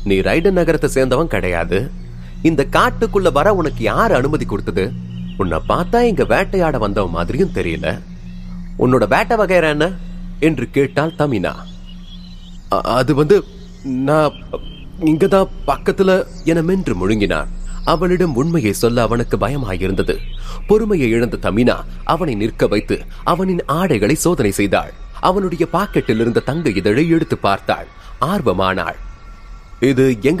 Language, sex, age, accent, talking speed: Tamil, male, 30-49, native, 80 wpm